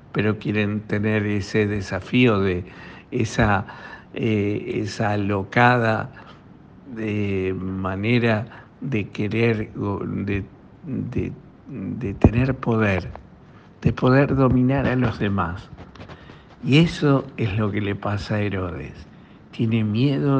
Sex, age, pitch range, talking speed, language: male, 60-79, 100-120 Hz, 105 wpm, Spanish